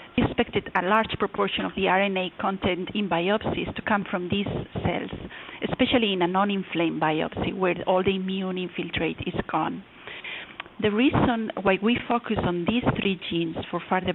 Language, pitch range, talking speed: English, 185-220 Hz, 160 wpm